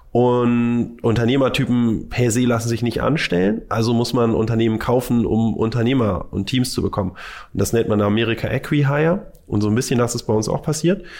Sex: male